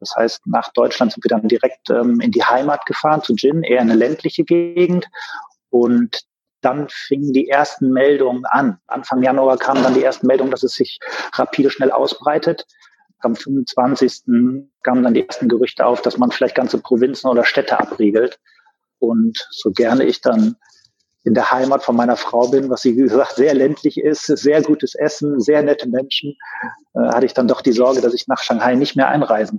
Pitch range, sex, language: 120-145 Hz, male, German